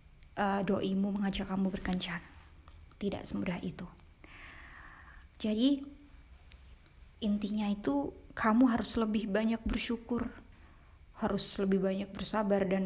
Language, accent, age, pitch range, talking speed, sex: Indonesian, native, 20-39, 185-230 Hz, 95 wpm, female